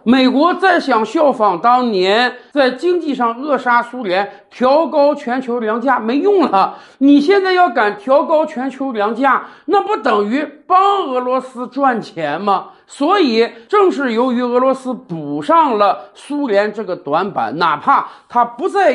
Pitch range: 205-290 Hz